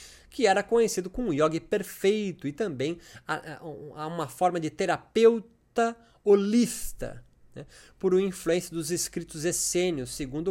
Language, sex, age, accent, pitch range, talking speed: Portuguese, male, 20-39, Brazilian, 155-215 Hz, 125 wpm